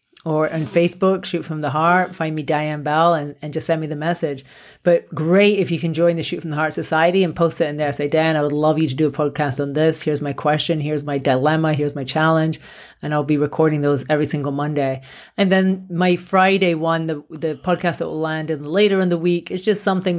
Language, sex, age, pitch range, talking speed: English, female, 30-49, 155-180 Hz, 245 wpm